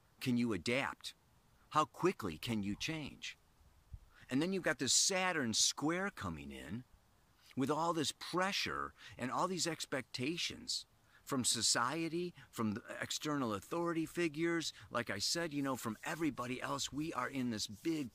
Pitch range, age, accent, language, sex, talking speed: 105-155 Hz, 50-69, American, English, male, 150 wpm